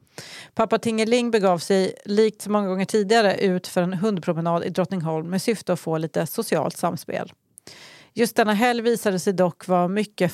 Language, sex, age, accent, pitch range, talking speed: Swedish, female, 40-59, native, 180-235 Hz, 175 wpm